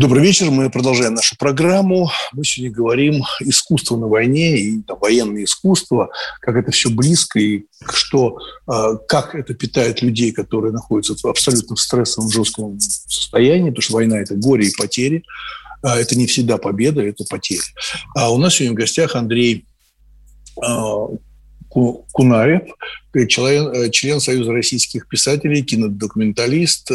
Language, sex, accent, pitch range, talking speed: Russian, male, native, 110-145 Hz, 130 wpm